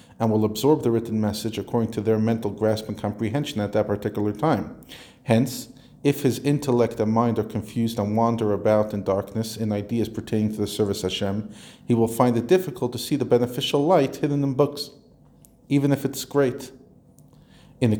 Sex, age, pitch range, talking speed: male, 40-59, 105-130 Hz, 185 wpm